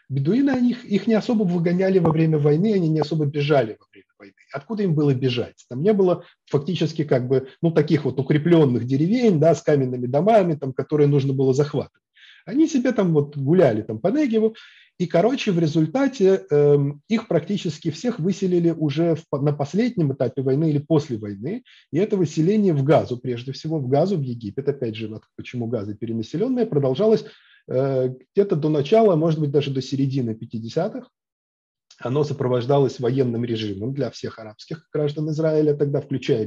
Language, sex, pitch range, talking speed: English, male, 125-170 Hz, 170 wpm